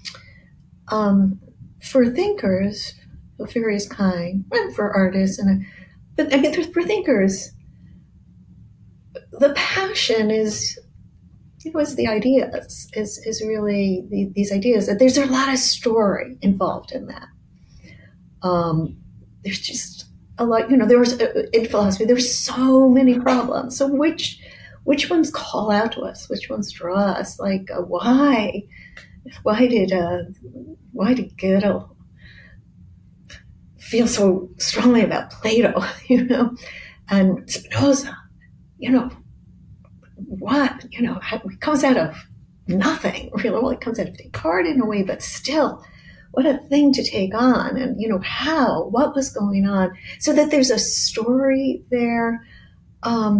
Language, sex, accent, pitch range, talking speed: English, female, American, 195-270 Hz, 140 wpm